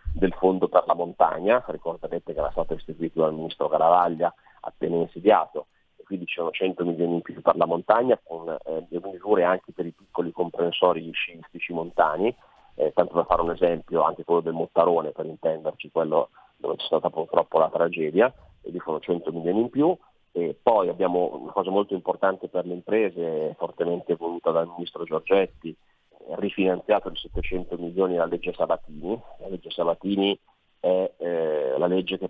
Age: 30-49